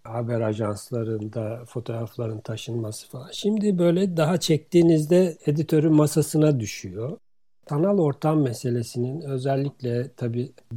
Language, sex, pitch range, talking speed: Turkish, male, 120-160 Hz, 95 wpm